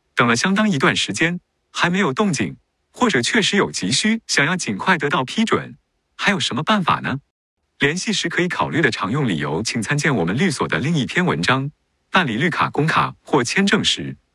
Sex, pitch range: male, 140-200 Hz